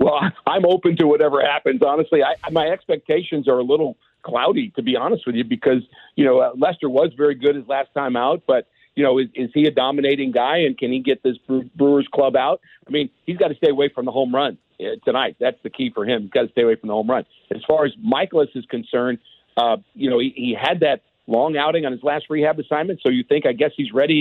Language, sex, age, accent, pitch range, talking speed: English, male, 50-69, American, 130-160 Hz, 245 wpm